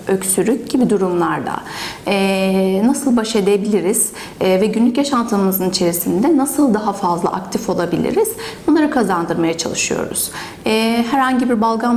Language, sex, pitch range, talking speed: Turkish, female, 200-250 Hz, 120 wpm